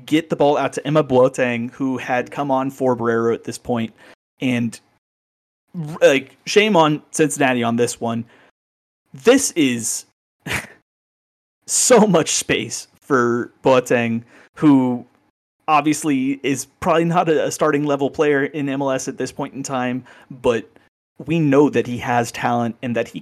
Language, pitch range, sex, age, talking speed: English, 115-140 Hz, male, 30-49, 145 wpm